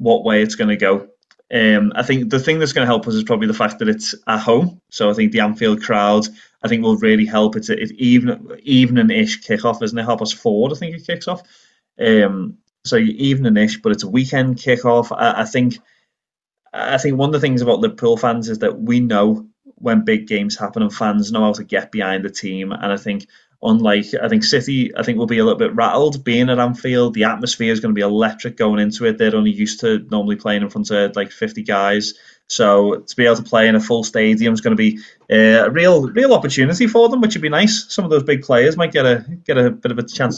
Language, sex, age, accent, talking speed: English, male, 20-39, British, 255 wpm